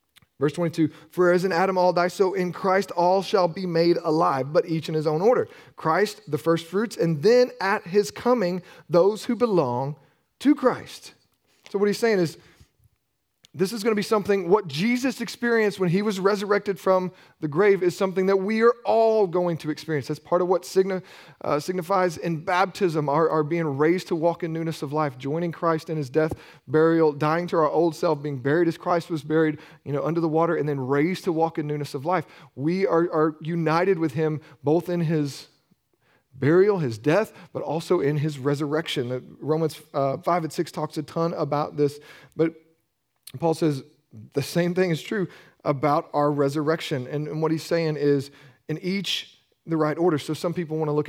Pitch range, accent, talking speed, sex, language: 150-185 Hz, American, 195 wpm, male, English